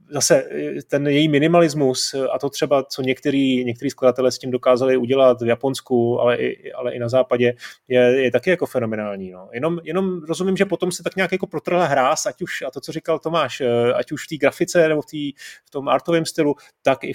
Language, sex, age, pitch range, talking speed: Czech, male, 30-49, 130-160 Hz, 215 wpm